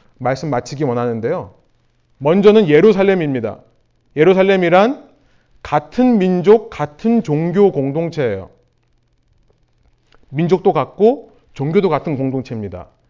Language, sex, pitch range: Korean, male, 140-220 Hz